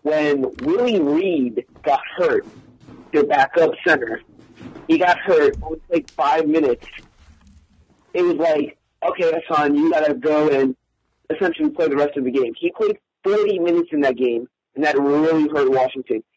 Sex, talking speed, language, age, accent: male, 165 wpm, English, 40-59, American